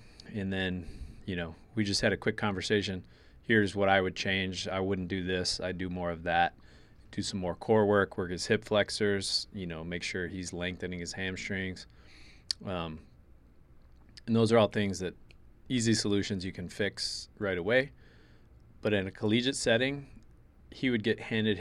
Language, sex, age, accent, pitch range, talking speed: English, male, 20-39, American, 90-110 Hz, 180 wpm